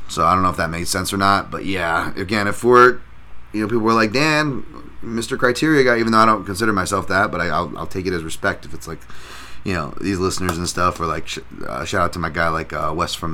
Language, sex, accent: English, male, American